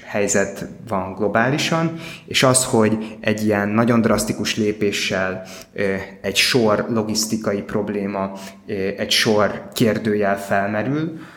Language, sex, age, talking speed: Hungarian, male, 20-39, 100 wpm